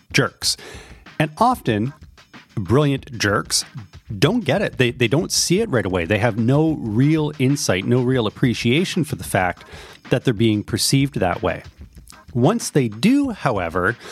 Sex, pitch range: male, 105-140 Hz